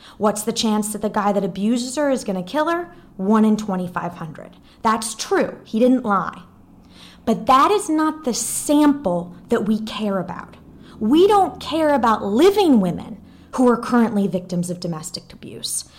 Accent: American